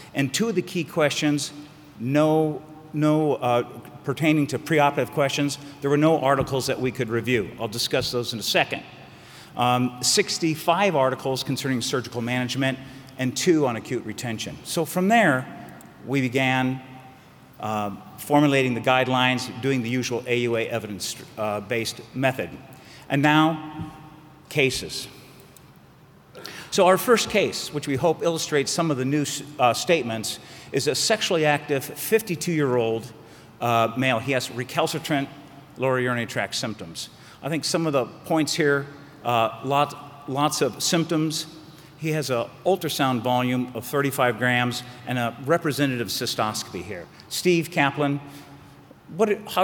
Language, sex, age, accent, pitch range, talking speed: English, male, 50-69, American, 125-155 Hz, 135 wpm